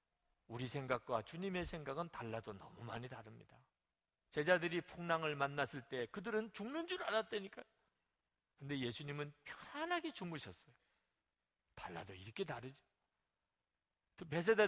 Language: Korean